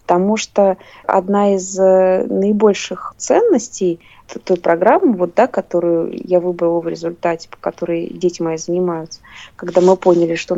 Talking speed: 140 wpm